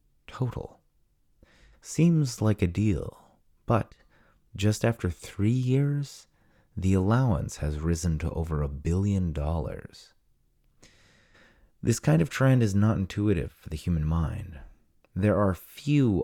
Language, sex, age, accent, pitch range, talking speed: English, male, 30-49, American, 80-105 Hz, 120 wpm